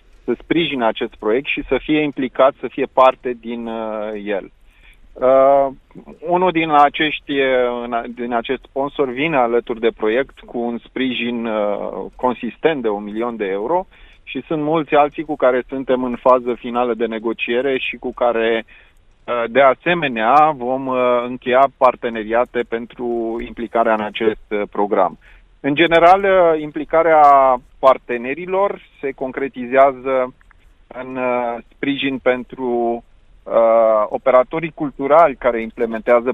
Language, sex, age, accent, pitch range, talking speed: Romanian, male, 30-49, native, 115-140 Hz, 125 wpm